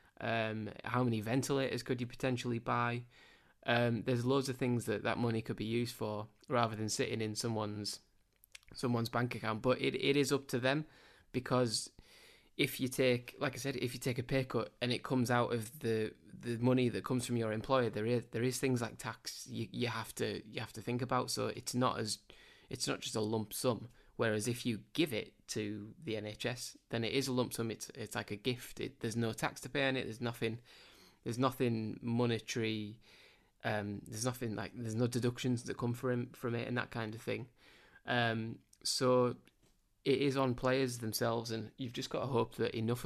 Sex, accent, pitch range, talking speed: male, British, 110-125 Hz, 210 wpm